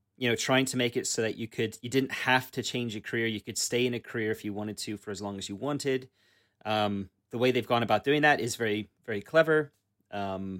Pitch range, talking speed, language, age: 105-125 Hz, 260 wpm, English, 30-49